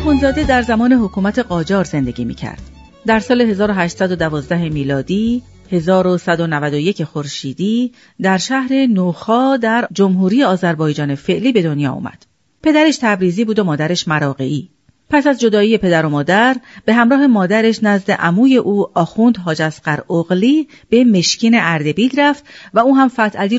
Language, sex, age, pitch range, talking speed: Persian, female, 40-59, 160-235 Hz, 135 wpm